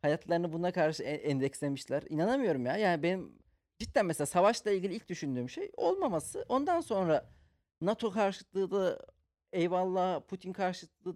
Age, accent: 40-59, native